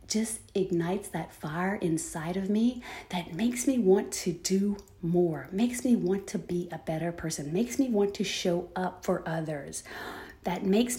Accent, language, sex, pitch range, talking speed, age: American, English, female, 180-250 Hz, 175 wpm, 30-49